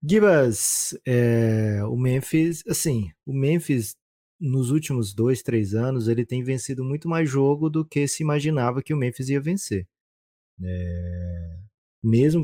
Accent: Brazilian